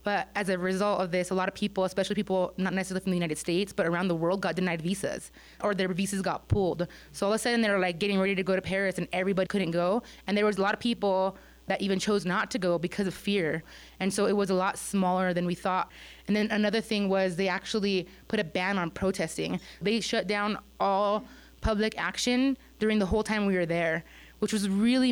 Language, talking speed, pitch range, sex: English, 245 wpm, 185-210 Hz, female